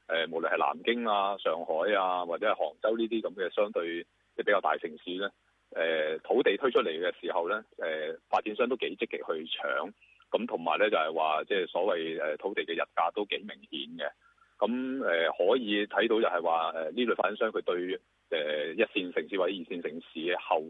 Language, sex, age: Chinese, male, 30-49